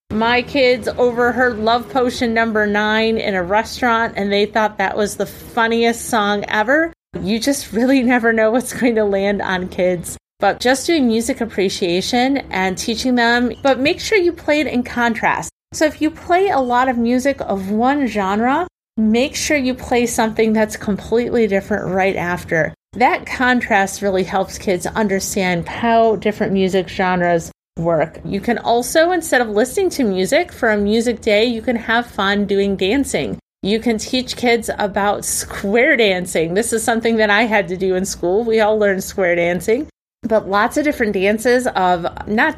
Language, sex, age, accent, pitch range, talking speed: English, female, 30-49, American, 200-245 Hz, 175 wpm